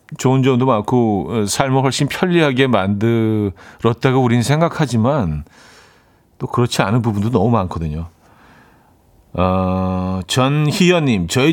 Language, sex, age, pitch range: Korean, male, 40-59, 100-155 Hz